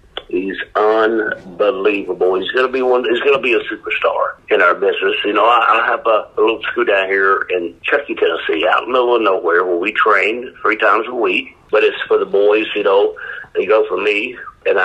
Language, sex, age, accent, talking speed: English, male, 50-69, American, 220 wpm